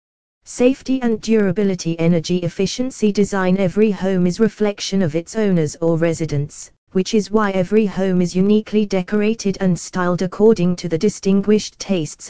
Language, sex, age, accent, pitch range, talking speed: English, female, 20-39, British, 170-210 Hz, 145 wpm